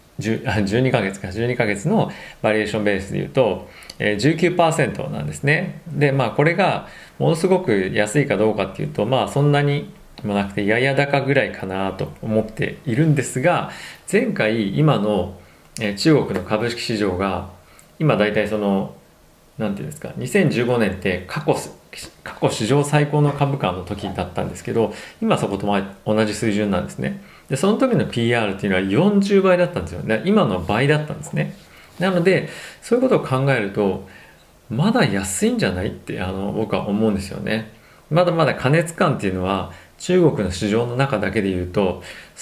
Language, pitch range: Japanese, 100-155 Hz